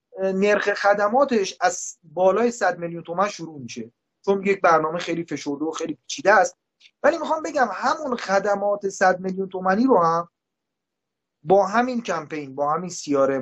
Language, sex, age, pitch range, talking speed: Persian, male, 30-49, 160-240 Hz, 150 wpm